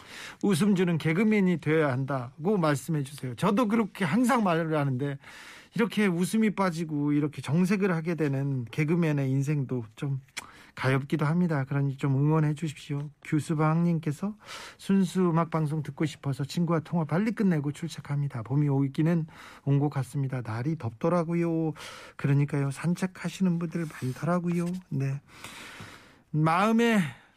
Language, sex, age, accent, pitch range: Korean, male, 40-59, native, 145-180 Hz